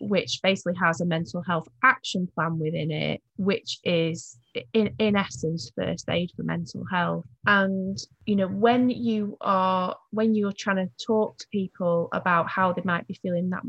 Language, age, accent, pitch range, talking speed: English, 30-49, British, 170-215 Hz, 175 wpm